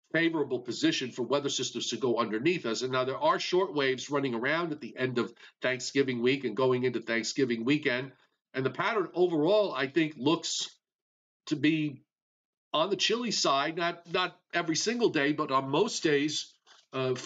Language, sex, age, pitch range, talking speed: English, male, 50-69, 130-160 Hz, 175 wpm